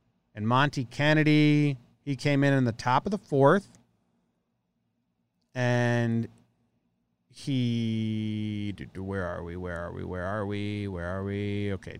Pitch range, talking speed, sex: 90-130 Hz, 135 wpm, male